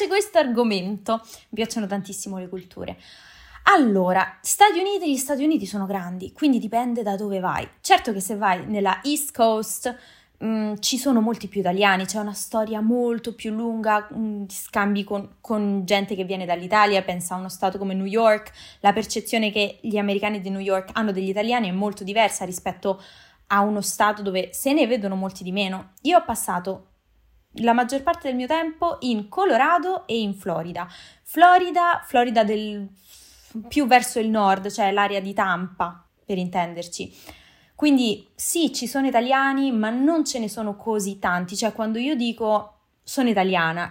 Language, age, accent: Italian, 20-39, native